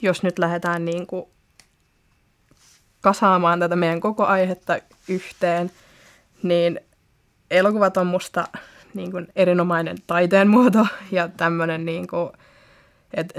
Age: 20-39